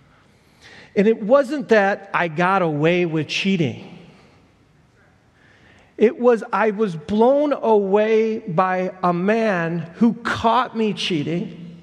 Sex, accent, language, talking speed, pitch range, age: male, American, English, 110 wpm, 180-230 Hz, 40-59